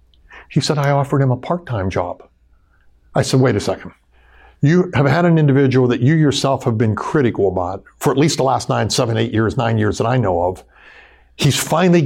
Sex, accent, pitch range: male, American, 115-160 Hz